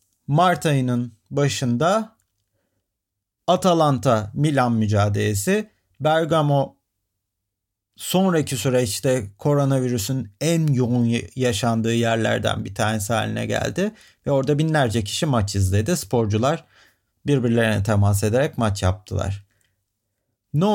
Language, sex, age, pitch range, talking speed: Turkish, male, 40-59, 105-150 Hz, 85 wpm